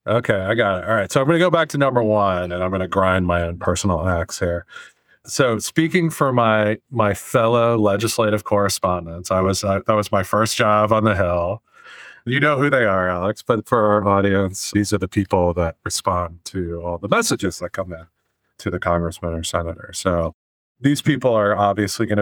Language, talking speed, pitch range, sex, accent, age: English, 210 wpm, 90-110 Hz, male, American, 40-59